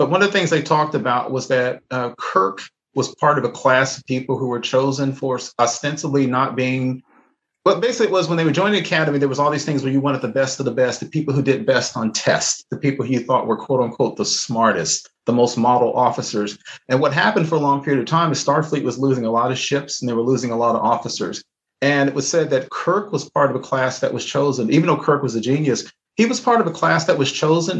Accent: American